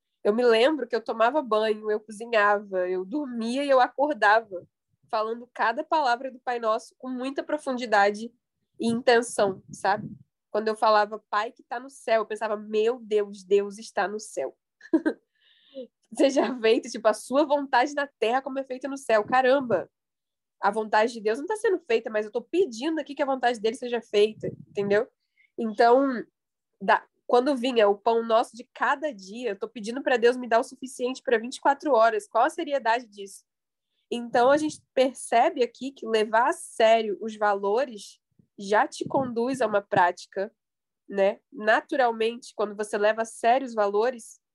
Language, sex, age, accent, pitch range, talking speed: Portuguese, female, 10-29, Brazilian, 215-275 Hz, 170 wpm